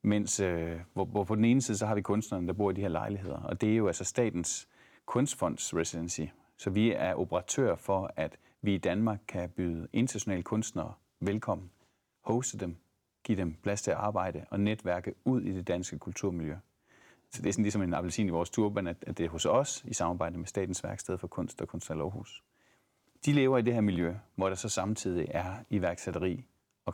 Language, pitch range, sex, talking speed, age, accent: Danish, 90-110 Hz, male, 210 wpm, 30-49, native